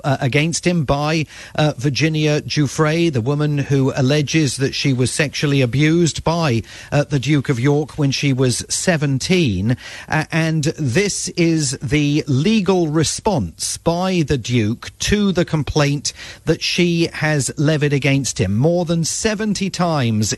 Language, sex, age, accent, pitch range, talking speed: English, male, 40-59, British, 130-170 Hz, 145 wpm